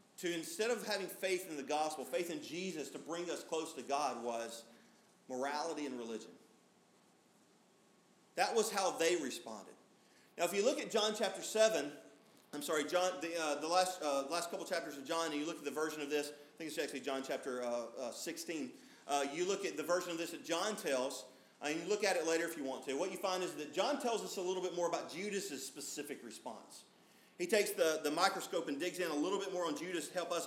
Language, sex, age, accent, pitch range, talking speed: English, male, 40-59, American, 155-205 Hz, 230 wpm